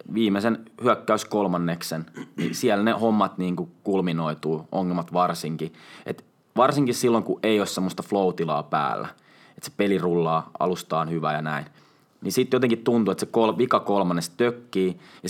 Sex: male